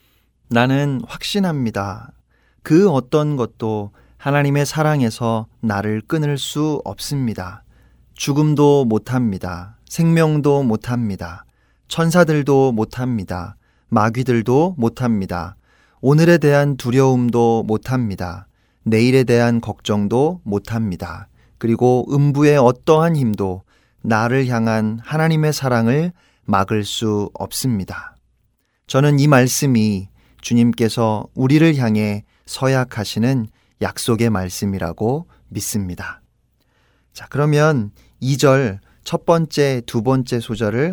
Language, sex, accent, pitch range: Korean, male, native, 105-145 Hz